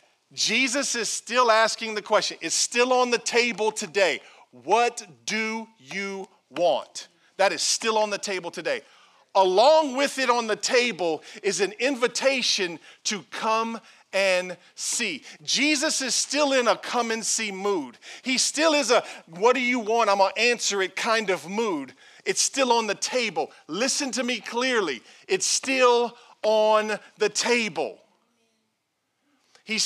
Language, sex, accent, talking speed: English, male, American, 155 wpm